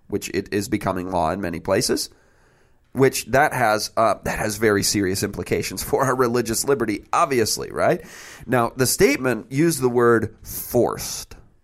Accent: American